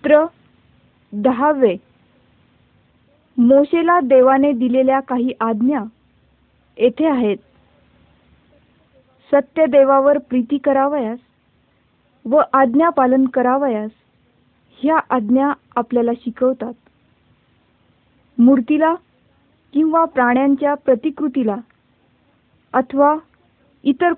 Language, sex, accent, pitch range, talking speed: Marathi, female, native, 250-295 Hz, 65 wpm